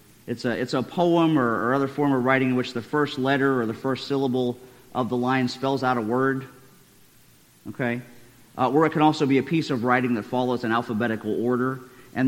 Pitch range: 125-150 Hz